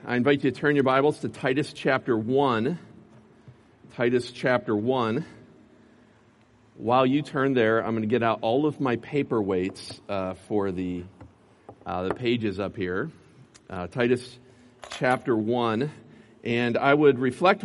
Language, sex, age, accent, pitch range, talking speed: English, male, 40-59, American, 115-140 Hz, 145 wpm